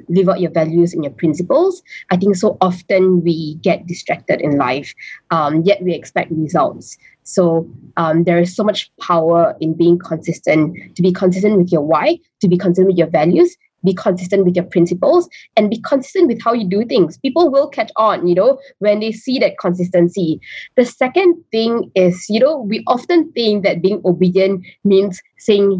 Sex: female